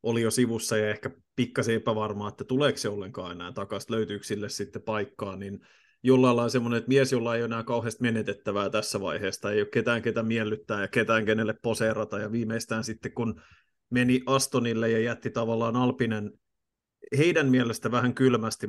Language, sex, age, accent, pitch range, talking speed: Finnish, male, 30-49, native, 105-125 Hz, 175 wpm